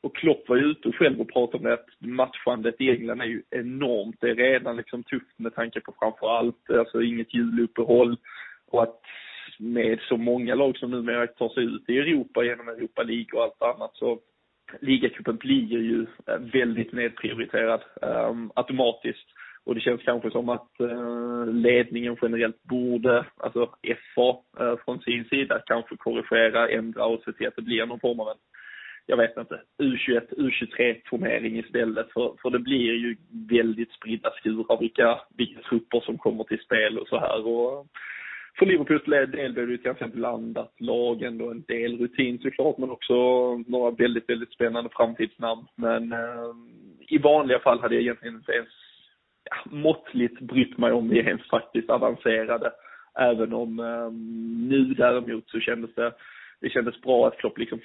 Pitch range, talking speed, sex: 115-125 Hz, 170 wpm, male